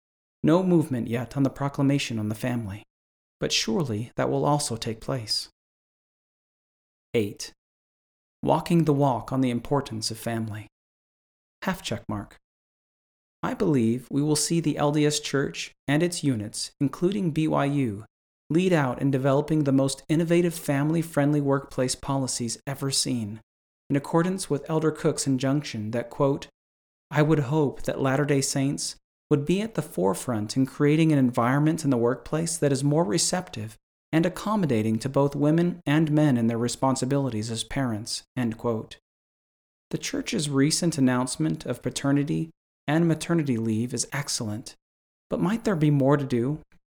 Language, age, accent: English, 40-59, American